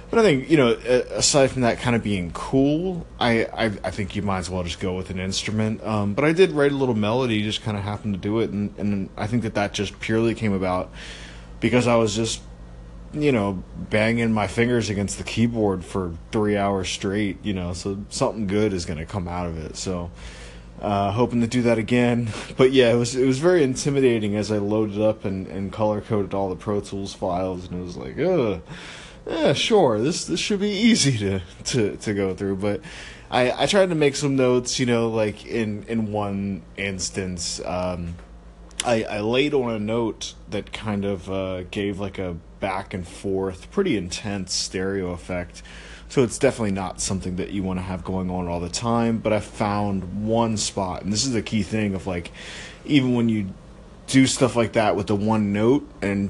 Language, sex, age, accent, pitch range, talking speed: English, male, 20-39, American, 95-115 Hz, 210 wpm